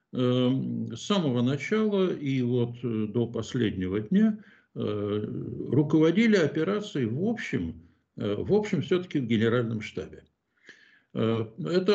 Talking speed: 95 wpm